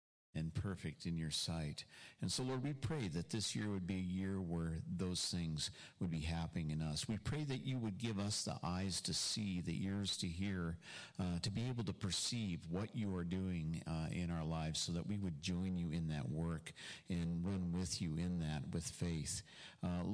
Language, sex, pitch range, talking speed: English, male, 80-100 Hz, 215 wpm